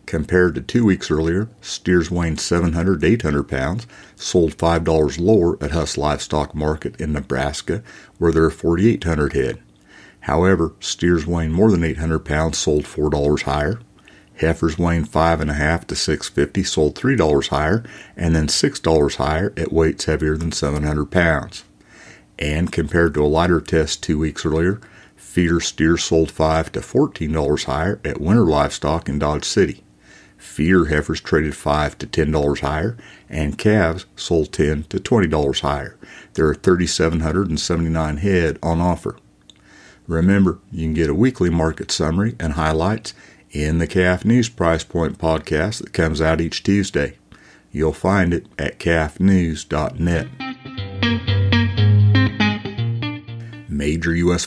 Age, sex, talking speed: 60-79, male, 140 wpm